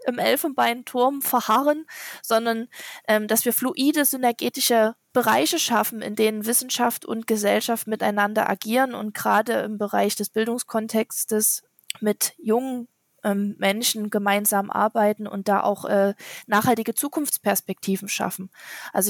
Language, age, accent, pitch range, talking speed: German, 20-39, German, 210-255 Hz, 120 wpm